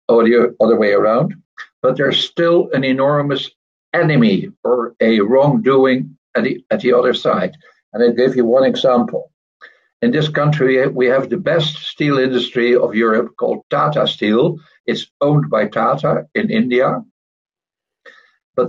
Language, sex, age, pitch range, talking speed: English, male, 60-79, 120-160 Hz, 155 wpm